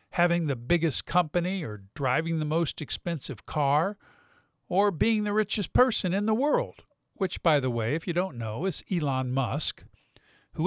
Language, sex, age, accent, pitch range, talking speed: English, male, 50-69, American, 140-190 Hz, 170 wpm